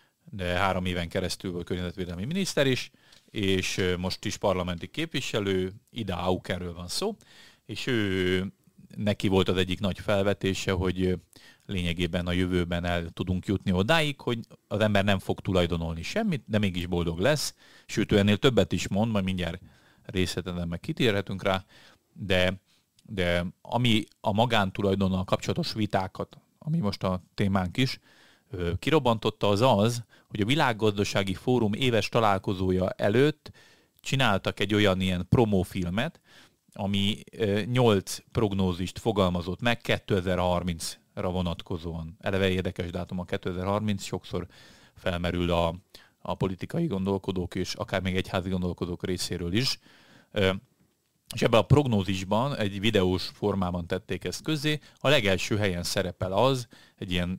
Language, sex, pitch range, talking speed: Hungarian, male, 90-110 Hz, 130 wpm